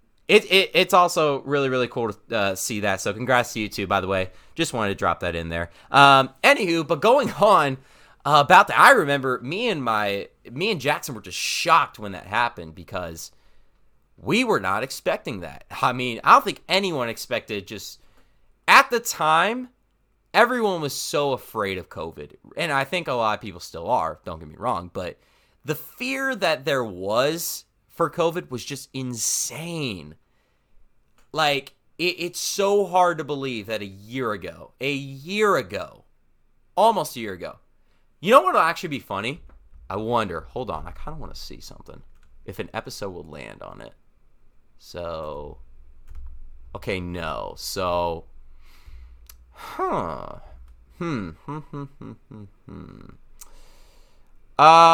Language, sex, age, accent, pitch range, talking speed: English, male, 30-49, American, 95-155 Hz, 155 wpm